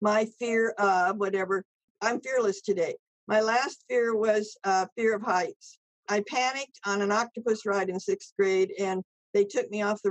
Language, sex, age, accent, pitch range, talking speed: English, female, 50-69, American, 200-250 Hz, 185 wpm